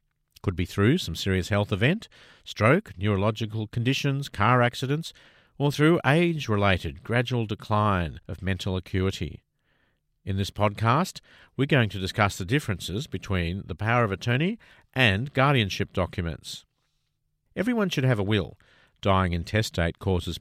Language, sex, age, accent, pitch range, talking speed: English, male, 50-69, Australian, 95-130 Hz, 130 wpm